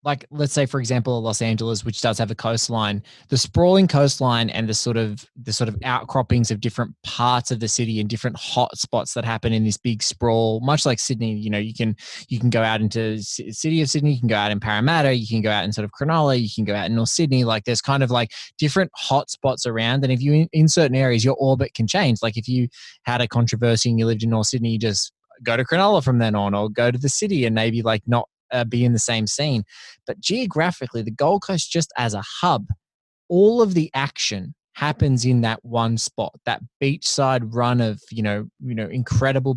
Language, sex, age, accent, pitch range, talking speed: English, male, 20-39, Australian, 110-135 Hz, 240 wpm